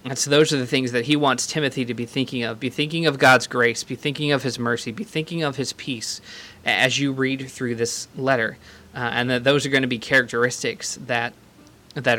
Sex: male